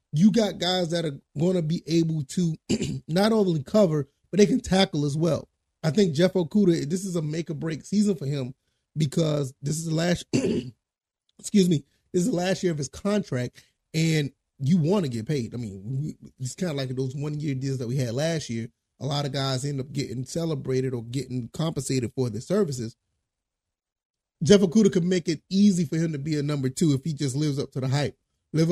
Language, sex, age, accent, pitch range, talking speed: English, male, 30-49, American, 135-175 Hz, 215 wpm